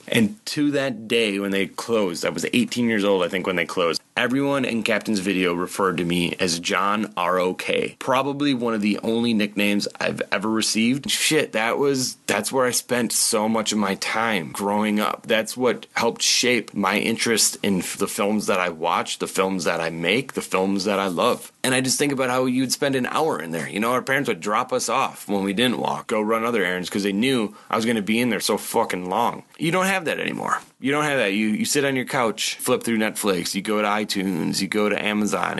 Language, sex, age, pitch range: English, male, 30-49, 95-120 Hz